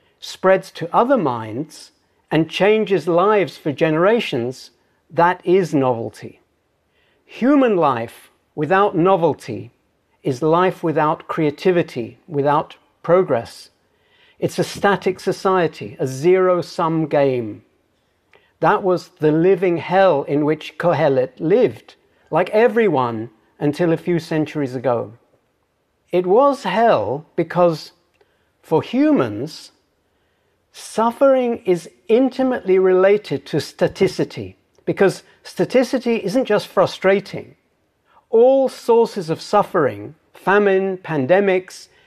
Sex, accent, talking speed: male, British, 95 wpm